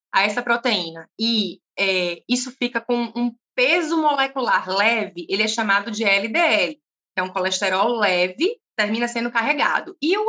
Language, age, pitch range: Portuguese, 20-39, 210-315 Hz